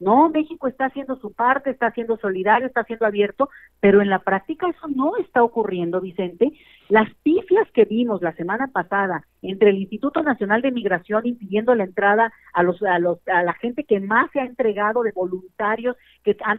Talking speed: 185 wpm